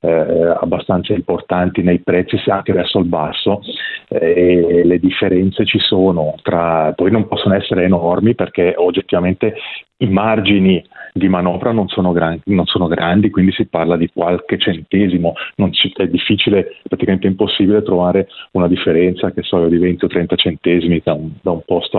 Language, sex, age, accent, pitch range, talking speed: Italian, male, 30-49, native, 85-95 Hz, 165 wpm